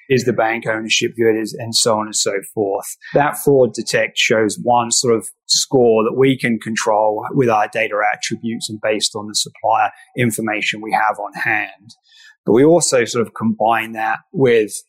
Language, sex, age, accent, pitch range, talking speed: English, male, 30-49, British, 110-125 Hz, 180 wpm